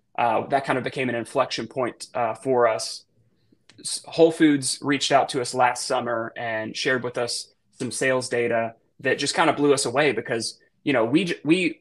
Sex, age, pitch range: male, 20-39, 120-140 Hz